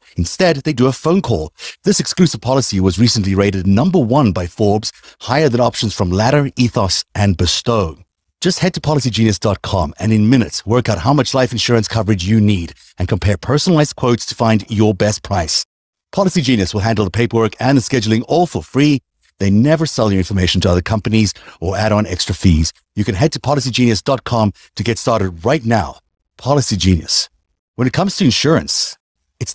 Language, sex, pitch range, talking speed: English, male, 95-125 Hz, 185 wpm